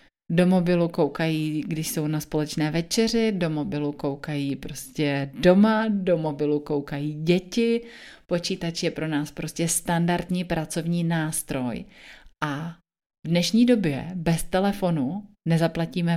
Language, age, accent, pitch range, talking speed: Czech, 30-49, native, 160-195 Hz, 120 wpm